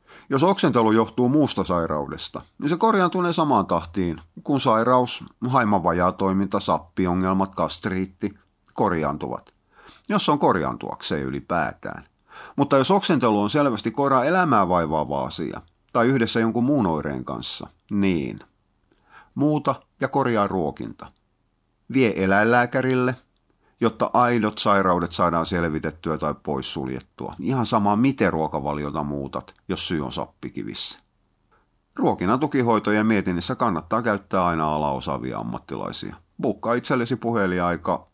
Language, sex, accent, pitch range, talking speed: Finnish, male, native, 85-120 Hz, 110 wpm